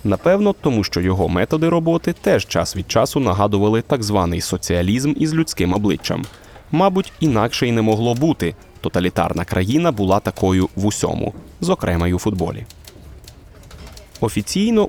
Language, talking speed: Ukrainian, 135 wpm